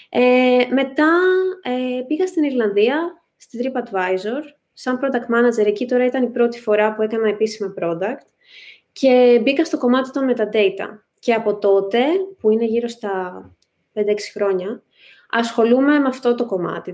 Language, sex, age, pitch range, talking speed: Greek, female, 20-39, 195-255 Hz, 150 wpm